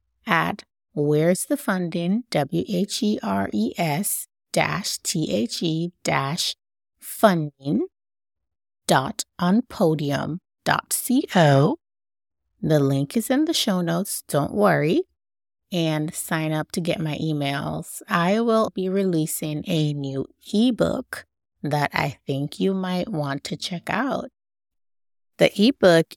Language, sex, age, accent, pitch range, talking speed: English, female, 30-49, American, 140-185 Hz, 125 wpm